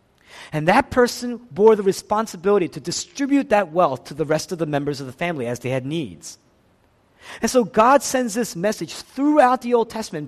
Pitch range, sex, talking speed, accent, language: 145-230 Hz, male, 195 wpm, American, English